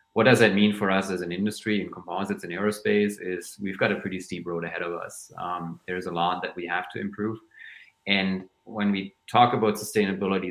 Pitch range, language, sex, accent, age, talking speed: 90-110 Hz, German, male, German, 30-49, 215 wpm